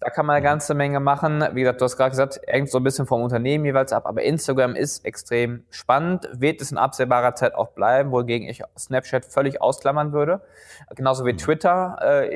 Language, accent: German, German